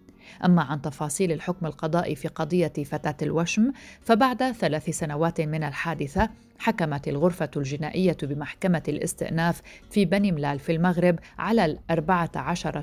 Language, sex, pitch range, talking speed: Arabic, female, 155-190 Hz, 125 wpm